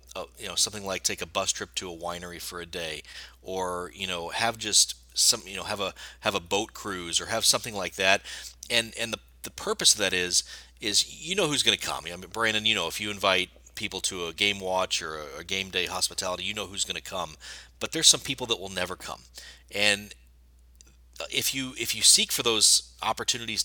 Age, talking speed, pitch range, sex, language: 30-49, 230 wpm, 90-110 Hz, male, English